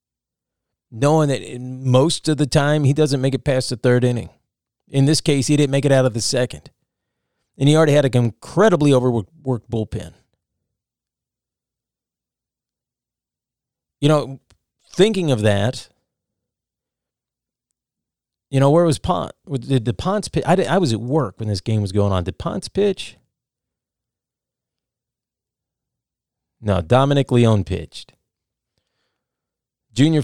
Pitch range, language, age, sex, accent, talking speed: 110-135 Hz, English, 40-59, male, American, 125 wpm